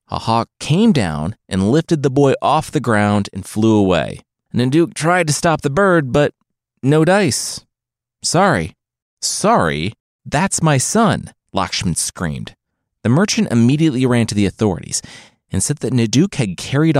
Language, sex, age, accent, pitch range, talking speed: English, male, 30-49, American, 100-155 Hz, 150 wpm